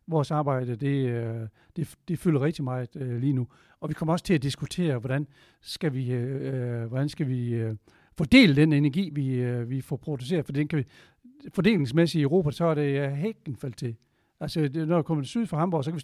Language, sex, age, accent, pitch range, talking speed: Danish, male, 60-79, native, 130-165 Hz, 215 wpm